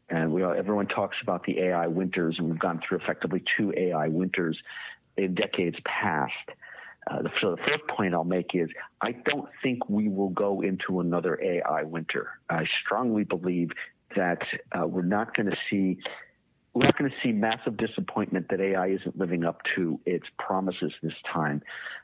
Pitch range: 85-100 Hz